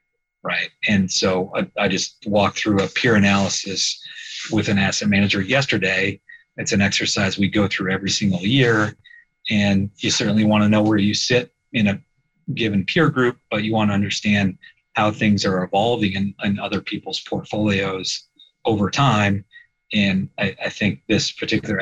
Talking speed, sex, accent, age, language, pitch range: 170 wpm, male, American, 40-59, English, 95-130 Hz